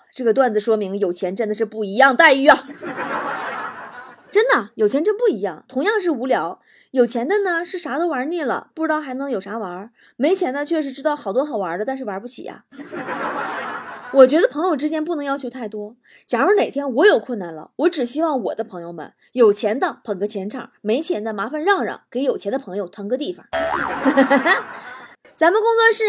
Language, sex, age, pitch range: Chinese, female, 20-39, 225-355 Hz